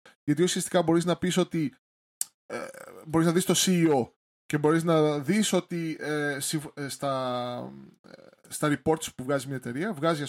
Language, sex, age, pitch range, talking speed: Greek, male, 20-39, 140-165 Hz, 155 wpm